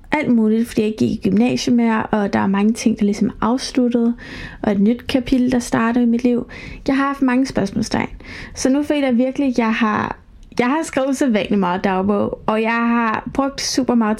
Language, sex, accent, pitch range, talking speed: Danish, female, native, 215-250 Hz, 205 wpm